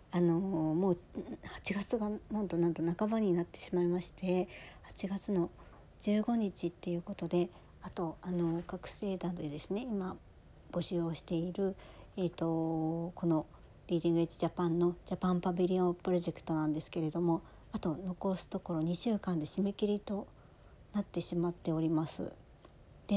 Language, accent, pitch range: Japanese, native, 170-195 Hz